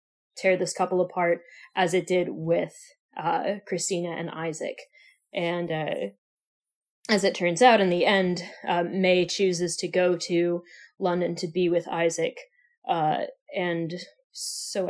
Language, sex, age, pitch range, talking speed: English, female, 20-39, 180-245 Hz, 140 wpm